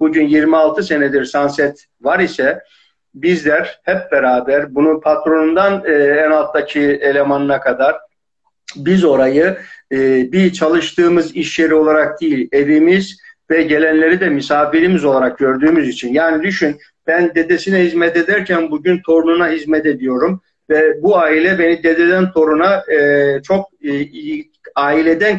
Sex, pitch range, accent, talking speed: male, 155-215 Hz, native, 115 wpm